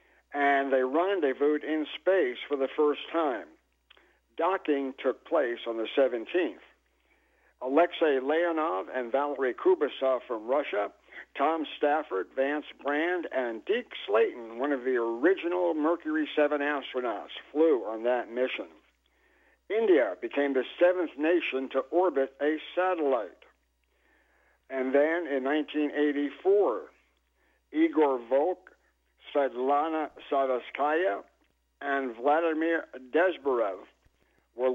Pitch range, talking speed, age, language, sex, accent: 130-170 Hz, 105 wpm, 60-79, English, male, American